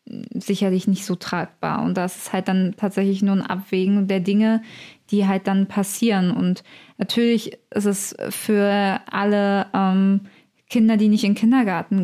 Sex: female